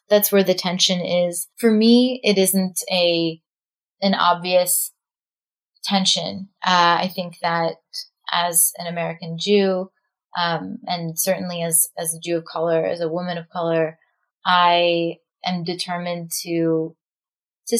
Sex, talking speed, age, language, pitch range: female, 135 wpm, 20-39, English, 165-190 Hz